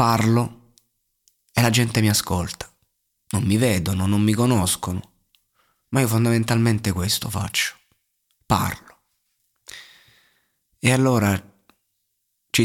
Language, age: Italian, 20-39